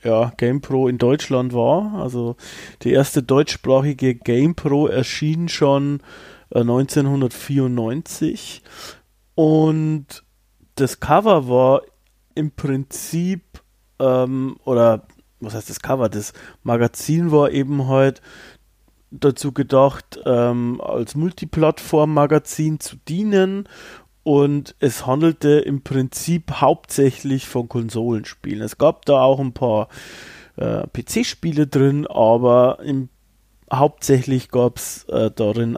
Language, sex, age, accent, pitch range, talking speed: German, male, 30-49, German, 120-150 Hz, 100 wpm